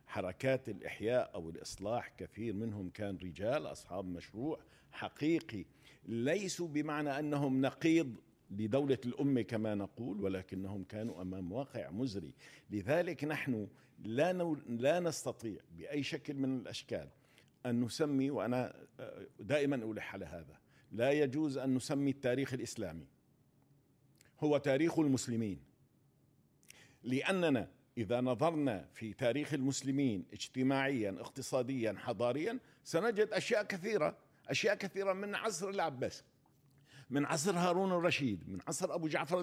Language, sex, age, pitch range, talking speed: Arabic, male, 50-69, 120-160 Hz, 115 wpm